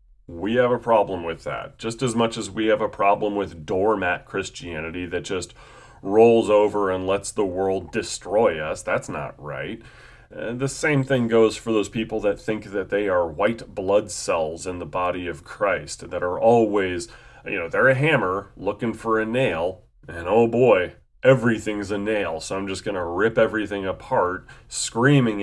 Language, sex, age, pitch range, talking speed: English, male, 30-49, 95-120 Hz, 180 wpm